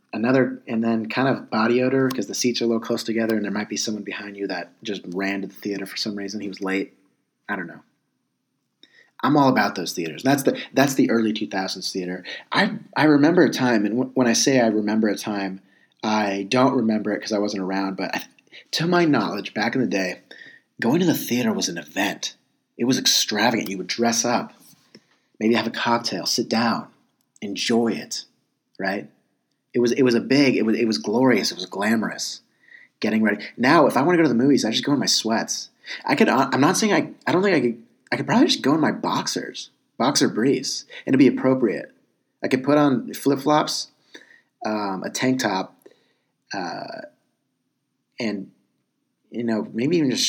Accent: American